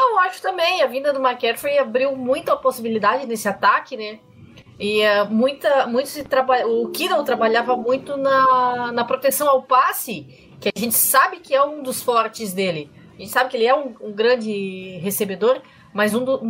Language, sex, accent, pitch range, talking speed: Portuguese, female, Brazilian, 235-300 Hz, 190 wpm